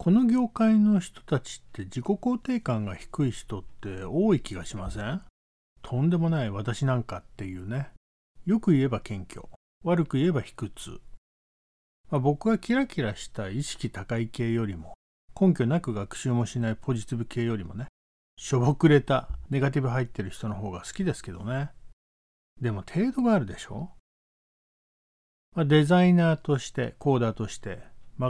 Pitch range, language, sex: 100-160 Hz, Japanese, male